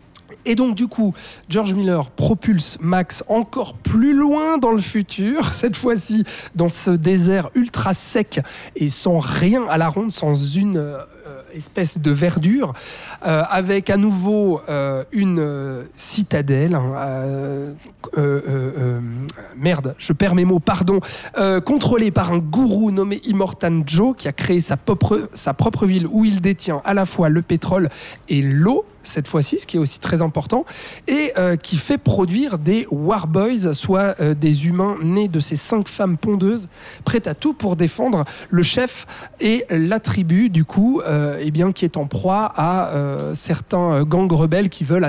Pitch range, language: 155-205 Hz, French